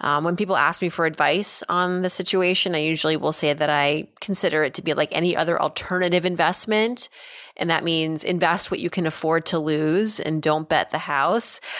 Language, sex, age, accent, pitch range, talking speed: English, female, 30-49, American, 160-200 Hz, 205 wpm